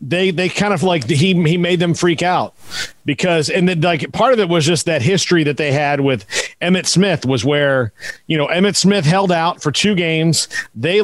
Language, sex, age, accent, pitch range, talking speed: English, male, 40-59, American, 140-175 Hz, 225 wpm